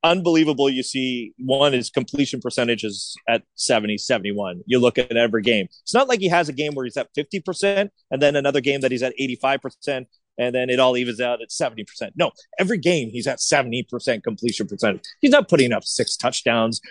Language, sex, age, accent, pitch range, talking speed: English, male, 30-49, American, 120-150 Hz, 200 wpm